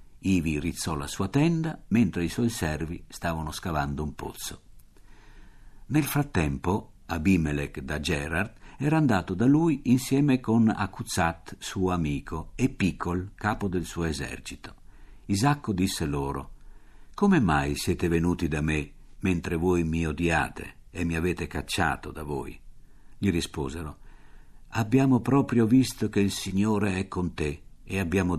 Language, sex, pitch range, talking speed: Italian, male, 85-110 Hz, 135 wpm